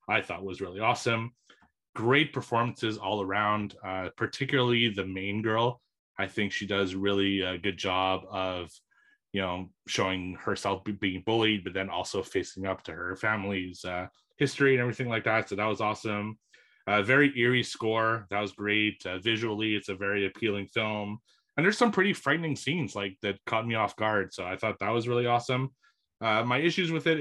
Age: 30-49